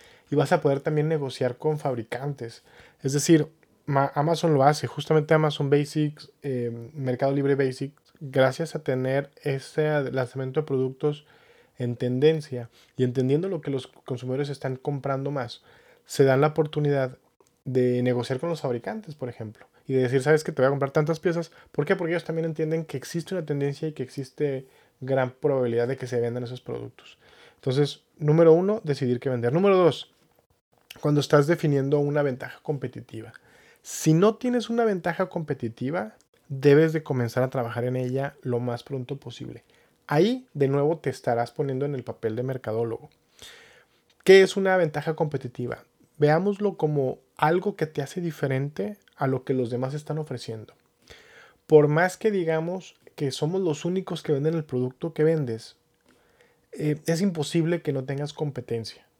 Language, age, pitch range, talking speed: Spanish, 20-39, 130-160 Hz, 165 wpm